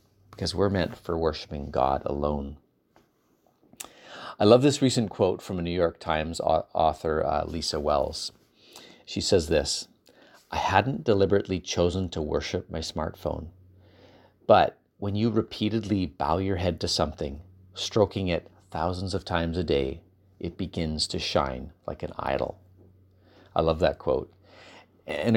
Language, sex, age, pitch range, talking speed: English, male, 30-49, 85-105 Hz, 140 wpm